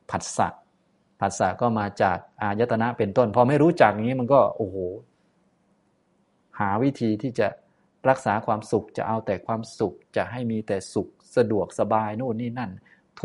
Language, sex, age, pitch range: Thai, male, 20-39, 100-125 Hz